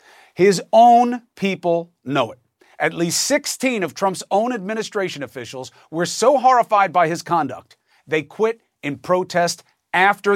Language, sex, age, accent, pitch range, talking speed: English, male, 40-59, American, 165-225 Hz, 140 wpm